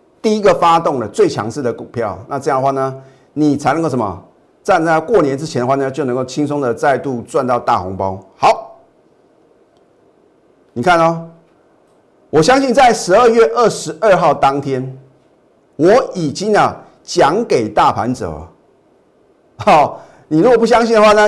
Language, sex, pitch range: Chinese, male, 130-185 Hz